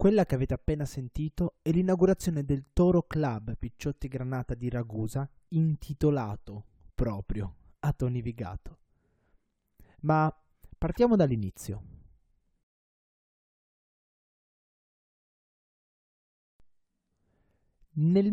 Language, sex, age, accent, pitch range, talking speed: Italian, male, 30-49, native, 110-155 Hz, 75 wpm